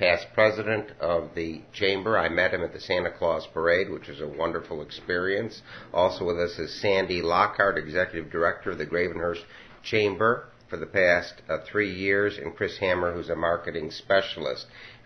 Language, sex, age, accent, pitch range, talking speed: English, male, 60-79, American, 90-105 Hz, 175 wpm